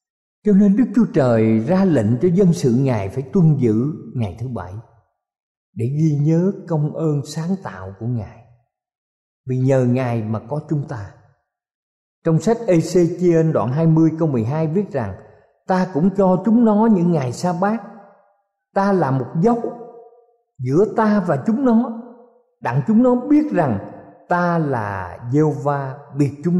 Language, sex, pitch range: Thai, male, 135-205 Hz